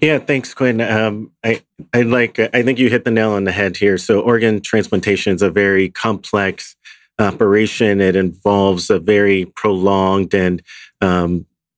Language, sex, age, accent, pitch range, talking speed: English, male, 40-59, American, 95-110 Hz, 165 wpm